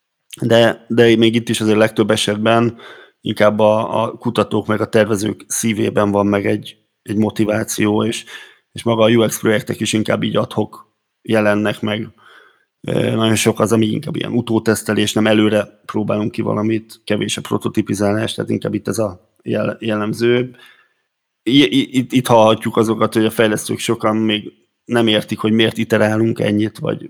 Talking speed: 155 wpm